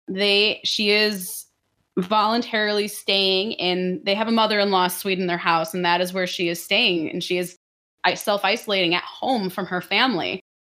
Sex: female